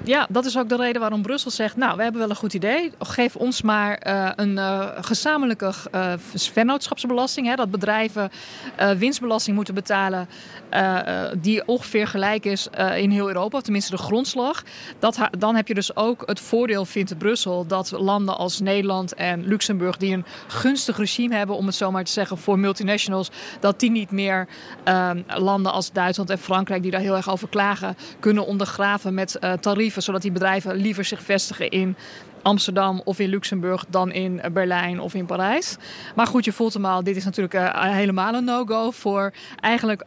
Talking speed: 190 wpm